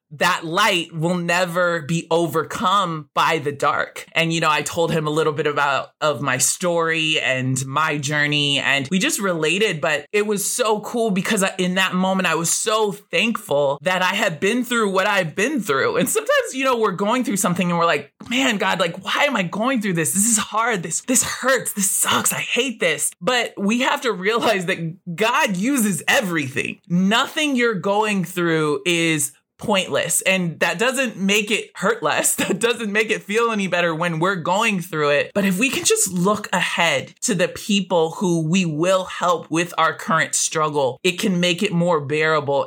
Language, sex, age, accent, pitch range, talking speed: English, male, 20-39, American, 165-210 Hz, 195 wpm